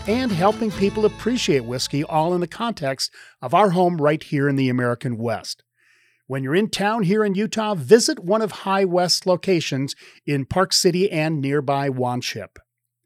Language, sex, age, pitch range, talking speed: English, male, 40-59, 140-200 Hz, 170 wpm